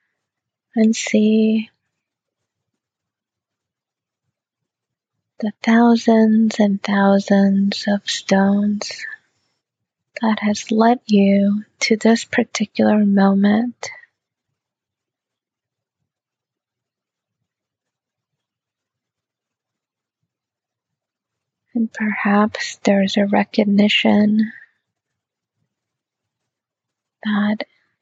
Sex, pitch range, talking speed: female, 200-225 Hz, 50 wpm